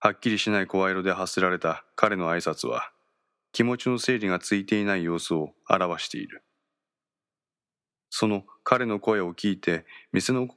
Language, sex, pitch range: Japanese, male, 85-115 Hz